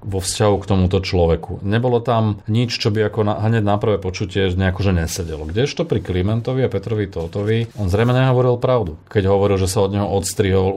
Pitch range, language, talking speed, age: 90-105 Hz, Slovak, 195 wpm, 40-59